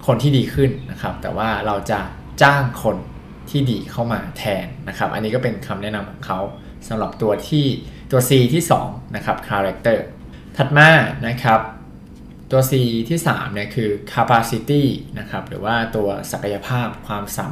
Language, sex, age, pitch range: Thai, male, 20-39, 100-130 Hz